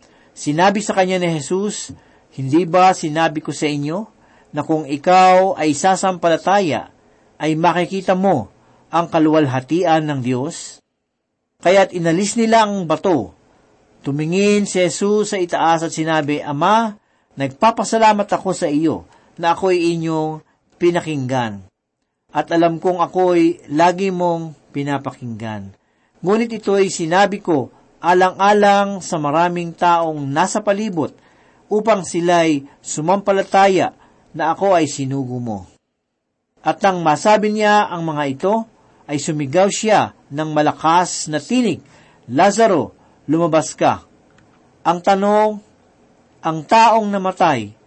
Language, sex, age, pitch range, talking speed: Filipino, male, 50-69, 150-195 Hz, 115 wpm